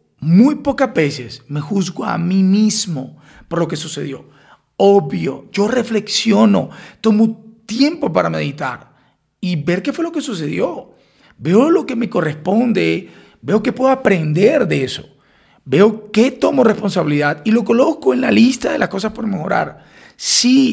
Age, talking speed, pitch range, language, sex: 40-59, 155 wpm, 155-225 Hz, Spanish, male